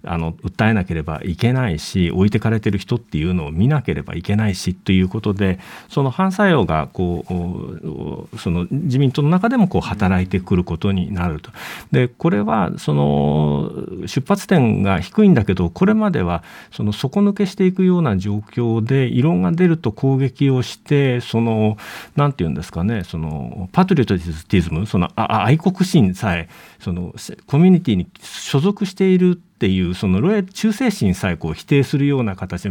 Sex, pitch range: male, 90-150 Hz